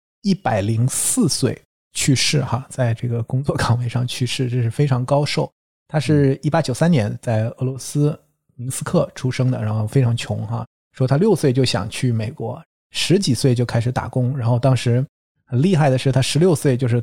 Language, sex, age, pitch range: Chinese, male, 20-39, 120-145 Hz